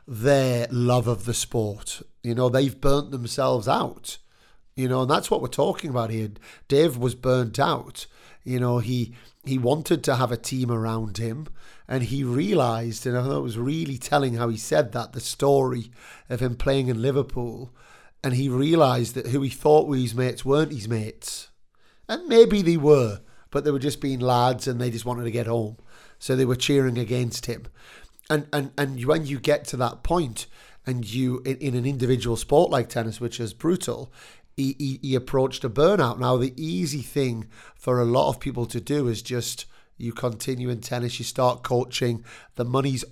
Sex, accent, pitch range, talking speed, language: male, British, 120-140 Hz, 195 wpm, English